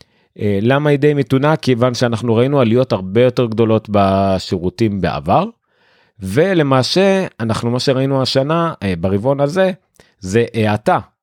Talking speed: 120 wpm